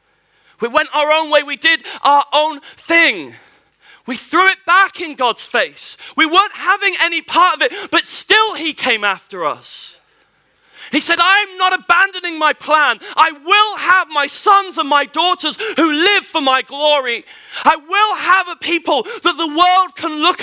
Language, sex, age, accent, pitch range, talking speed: English, male, 40-59, British, 235-340 Hz, 175 wpm